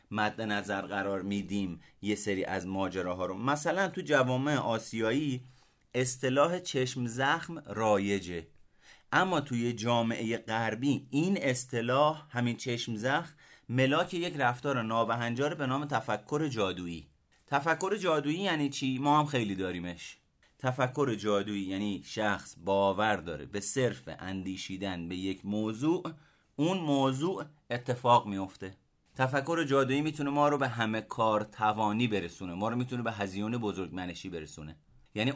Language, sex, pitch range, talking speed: Persian, male, 100-135 Hz, 130 wpm